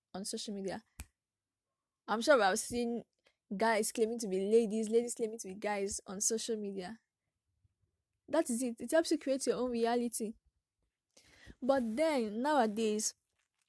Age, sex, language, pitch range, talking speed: 10-29, female, English, 220-260 Hz, 150 wpm